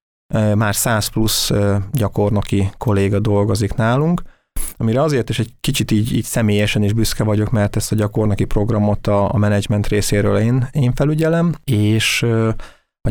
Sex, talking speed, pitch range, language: male, 140 wpm, 105-120 Hz, Hungarian